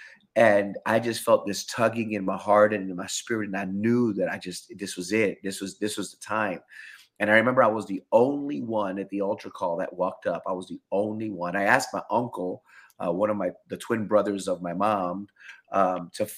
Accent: American